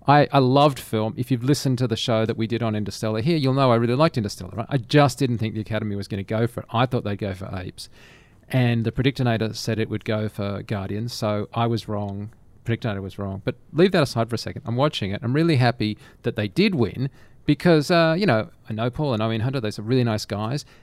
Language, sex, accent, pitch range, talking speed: English, male, Australian, 115-165 Hz, 255 wpm